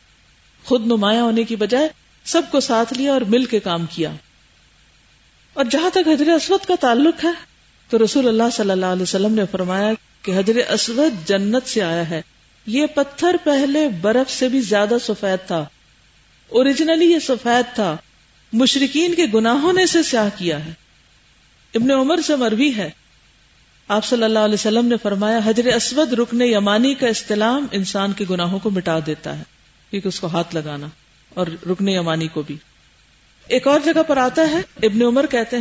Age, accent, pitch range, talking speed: 50-69, Indian, 195-255 Hz, 150 wpm